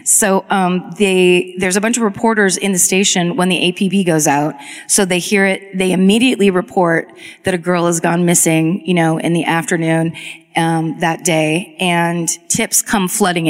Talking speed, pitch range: 180 wpm, 165-195 Hz